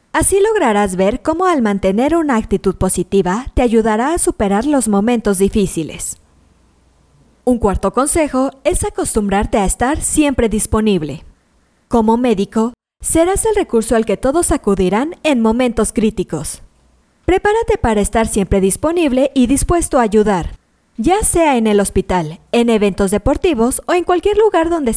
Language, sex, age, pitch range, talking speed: Spanish, female, 20-39, 195-290 Hz, 140 wpm